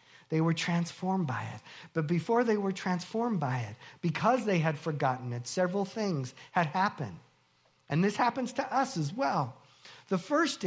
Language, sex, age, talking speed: English, male, 50-69, 170 wpm